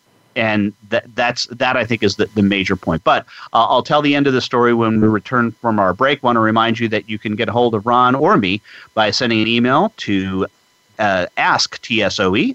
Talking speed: 230 wpm